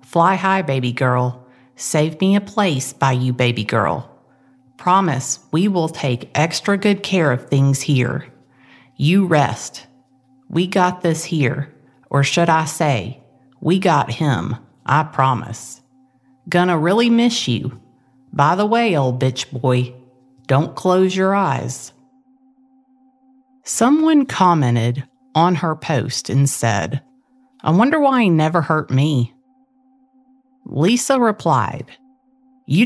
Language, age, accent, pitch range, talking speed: English, 50-69, American, 125-175 Hz, 125 wpm